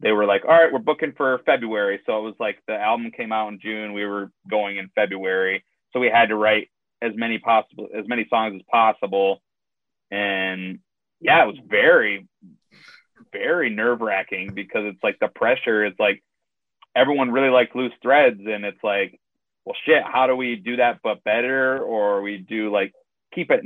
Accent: American